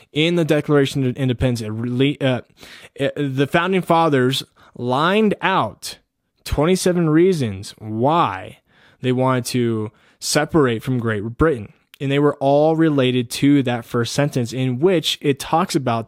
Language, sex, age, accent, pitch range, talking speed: English, male, 20-39, American, 120-160 Hz, 130 wpm